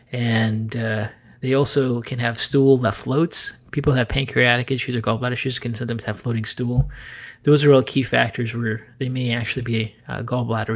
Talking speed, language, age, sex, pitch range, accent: 185 wpm, English, 30-49, male, 120-135 Hz, American